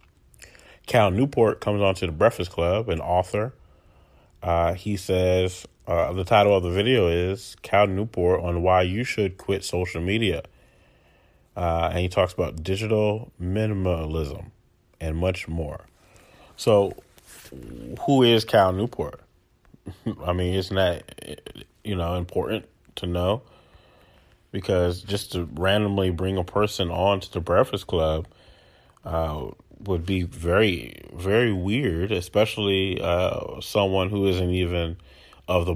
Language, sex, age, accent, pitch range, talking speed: English, male, 30-49, American, 85-105 Hz, 135 wpm